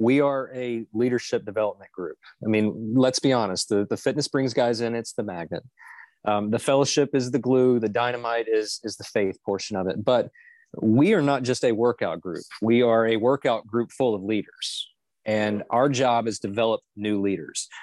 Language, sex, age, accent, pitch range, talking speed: English, male, 30-49, American, 105-135 Hz, 195 wpm